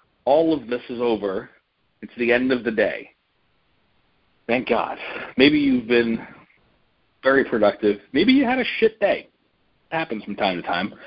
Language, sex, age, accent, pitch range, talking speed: English, male, 40-59, American, 115-140 Hz, 155 wpm